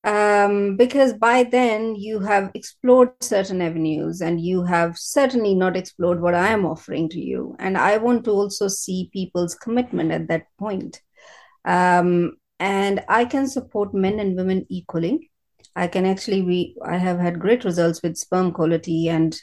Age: 30-49